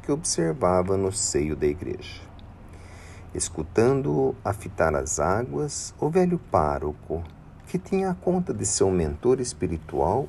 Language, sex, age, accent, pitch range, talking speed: Portuguese, male, 50-69, Brazilian, 85-125 Hz, 130 wpm